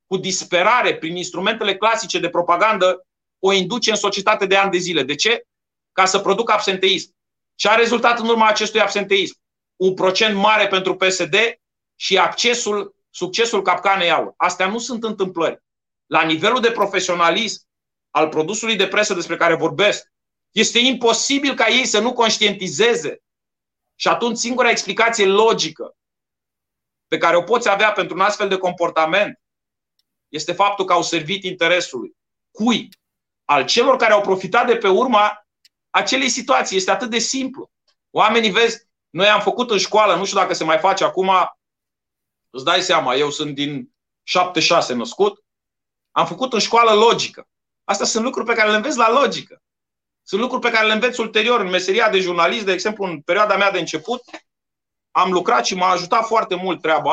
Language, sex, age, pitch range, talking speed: Romanian, male, 30-49, 180-230 Hz, 165 wpm